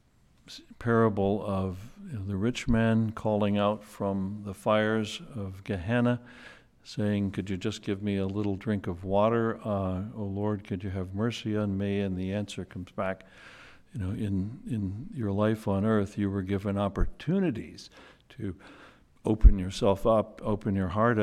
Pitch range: 95-110 Hz